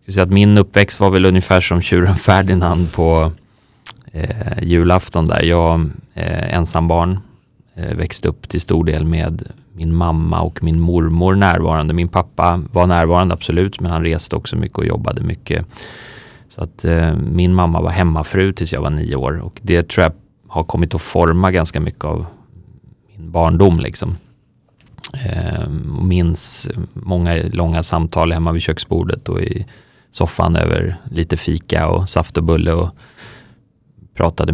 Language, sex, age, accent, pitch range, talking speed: Swedish, male, 30-49, native, 80-95 Hz, 155 wpm